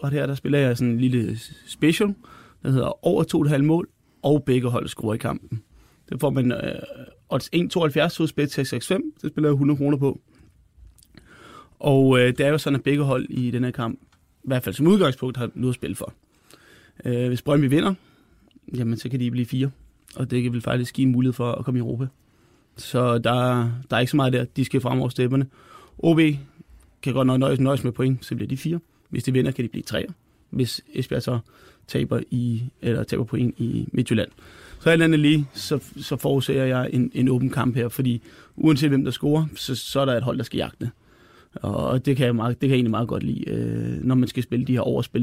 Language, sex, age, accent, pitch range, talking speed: Danish, male, 20-39, native, 120-140 Hz, 220 wpm